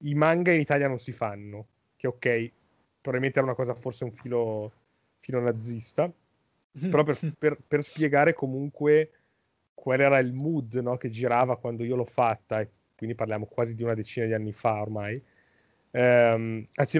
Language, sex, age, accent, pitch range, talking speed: Italian, male, 30-49, native, 115-135 Hz, 165 wpm